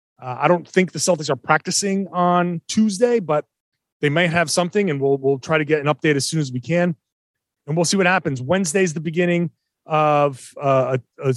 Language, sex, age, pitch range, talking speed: English, male, 30-49, 140-175 Hz, 210 wpm